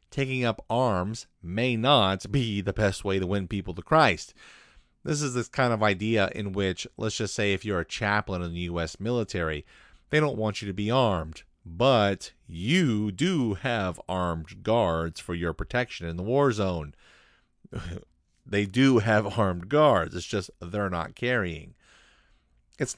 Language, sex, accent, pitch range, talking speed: English, male, American, 95-130 Hz, 165 wpm